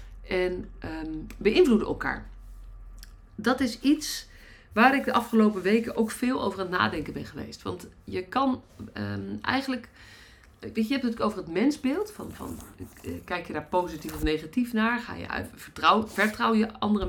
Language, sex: Dutch, female